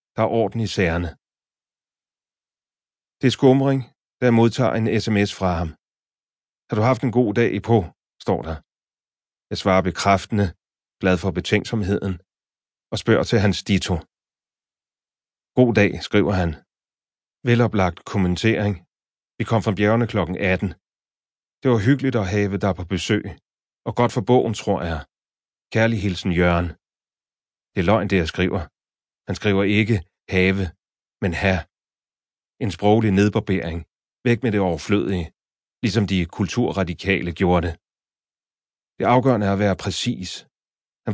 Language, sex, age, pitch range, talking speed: Danish, male, 30-49, 95-115 Hz, 140 wpm